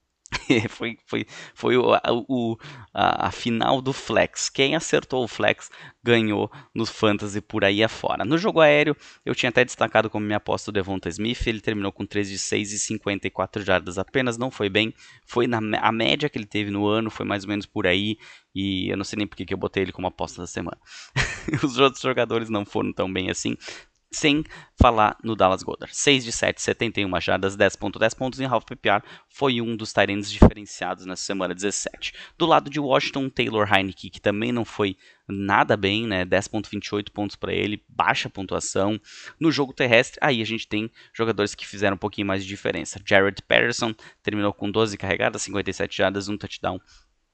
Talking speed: 190 wpm